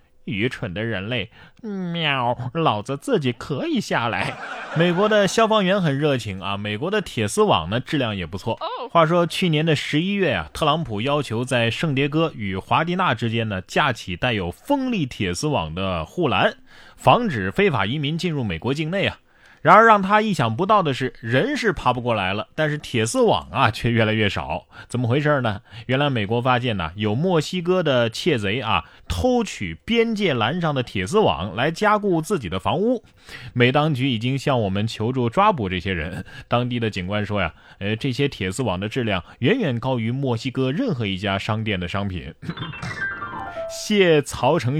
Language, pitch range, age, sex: Chinese, 110-165 Hz, 20-39, male